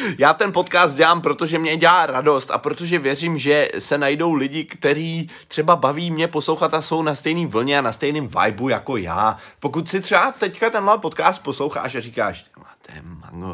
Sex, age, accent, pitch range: male, 30-49, native, 110-165 Hz